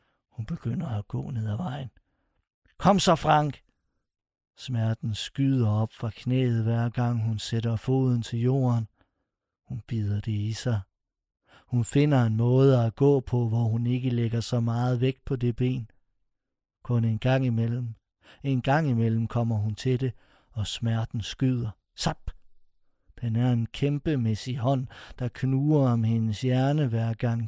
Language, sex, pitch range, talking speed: Danish, male, 110-130 Hz, 155 wpm